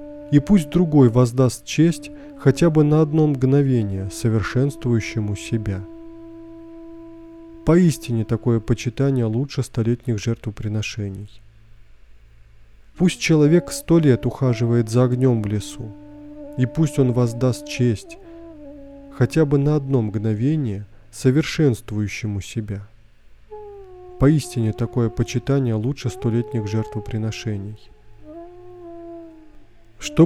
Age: 20-39